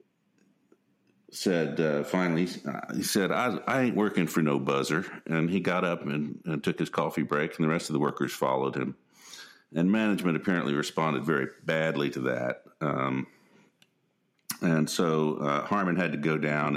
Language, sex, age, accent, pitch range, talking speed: English, male, 50-69, American, 75-90 Hz, 170 wpm